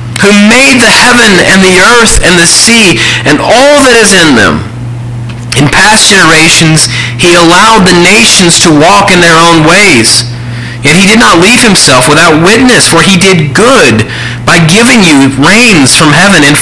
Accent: American